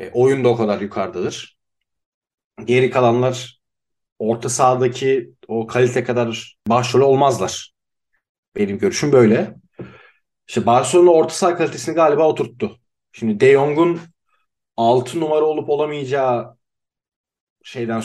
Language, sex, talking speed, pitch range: Turkish, male, 105 wpm, 115-135 Hz